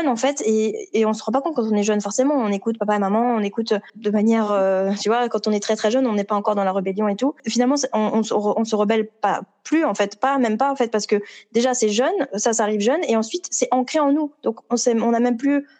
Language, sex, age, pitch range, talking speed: French, female, 20-39, 200-245 Hz, 295 wpm